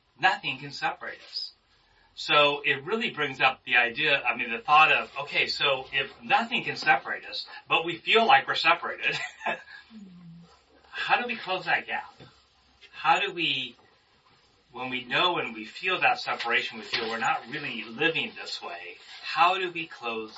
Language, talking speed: English, 170 wpm